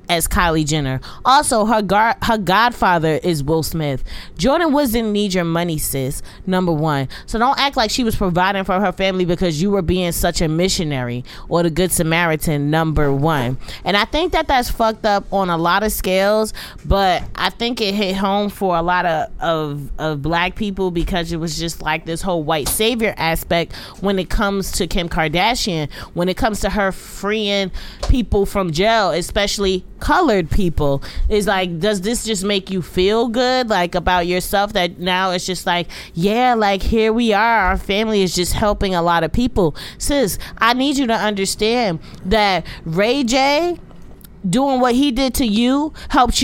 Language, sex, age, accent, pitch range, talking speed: English, female, 20-39, American, 175-230 Hz, 185 wpm